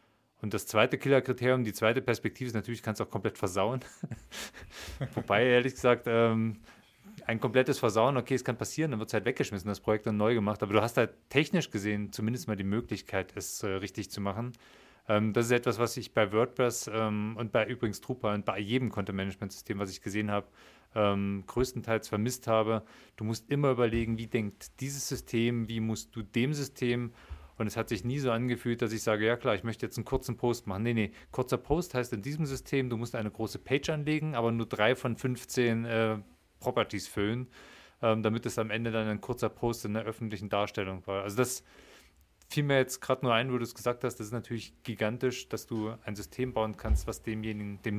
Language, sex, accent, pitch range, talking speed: German, male, German, 105-125 Hz, 210 wpm